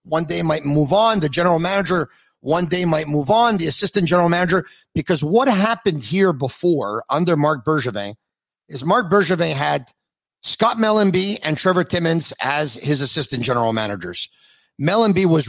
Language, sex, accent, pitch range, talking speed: English, male, American, 140-195 Hz, 160 wpm